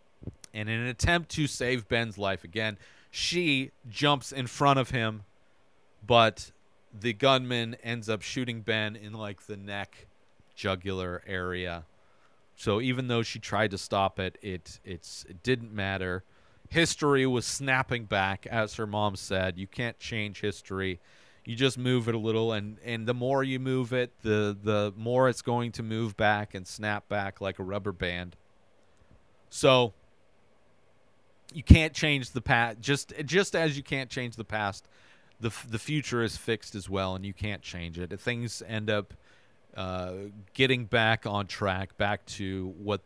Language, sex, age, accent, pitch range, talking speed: English, male, 40-59, American, 100-125 Hz, 165 wpm